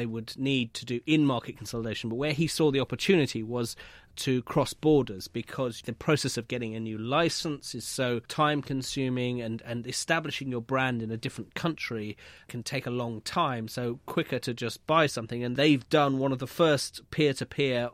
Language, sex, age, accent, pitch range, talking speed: English, male, 30-49, British, 115-140 Hz, 190 wpm